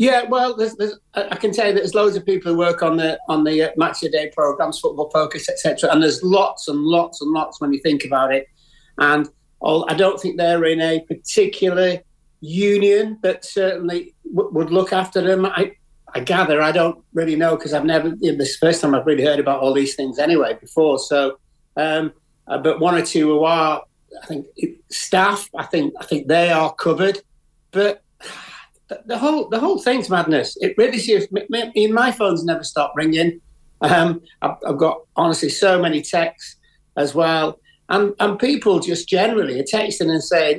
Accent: British